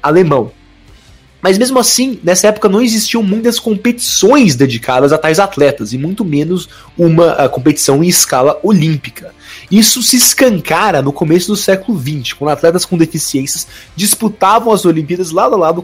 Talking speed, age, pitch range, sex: 150 wpm, 20-39, 150-210 Hz, male